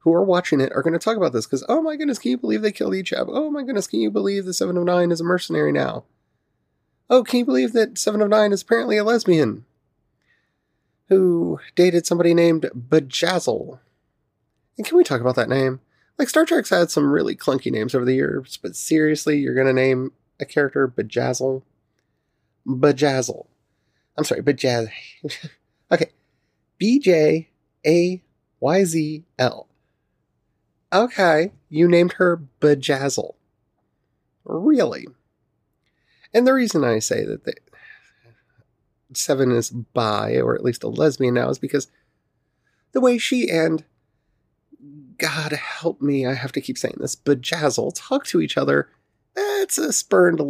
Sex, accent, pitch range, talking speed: male, American, 130-190 Hz, 155 wpm